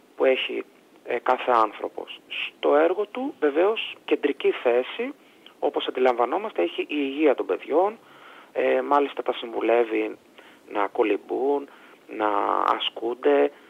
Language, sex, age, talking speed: Greek, male, 30-49, 115 wpm